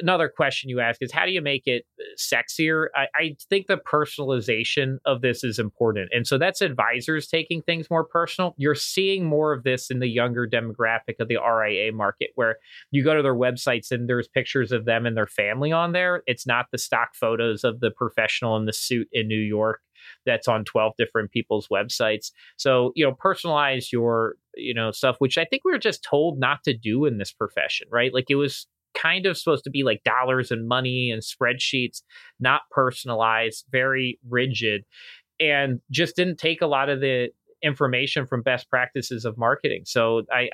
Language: English